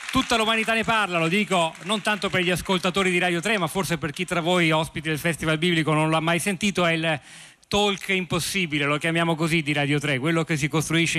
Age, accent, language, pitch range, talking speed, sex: 40-59, native, Italian, 145-170 Hz, 225 wpm, male